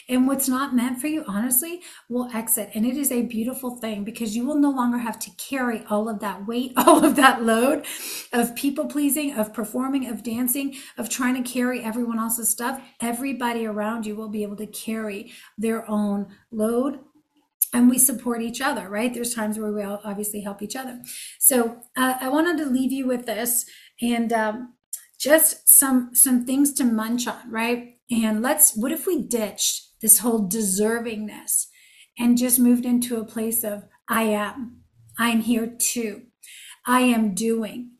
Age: 30-49